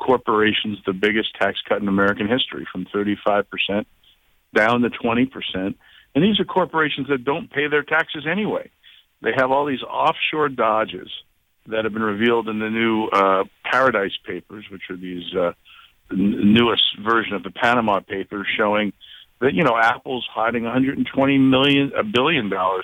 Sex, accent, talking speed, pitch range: male, American, 170 wpm, 105-135 Hz